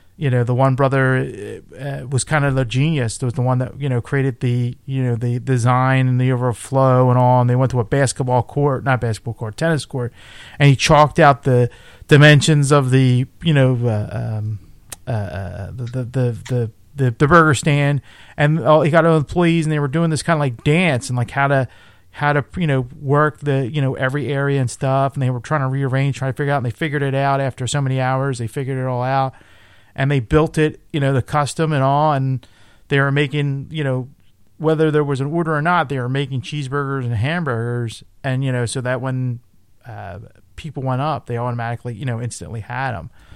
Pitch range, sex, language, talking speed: 120-140 Hz, male, English, 225 wpm